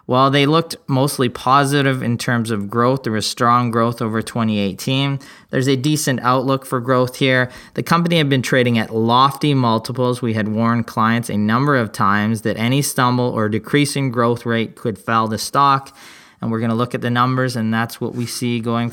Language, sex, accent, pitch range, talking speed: English, male, American, 115-135 Hz, 205 wpm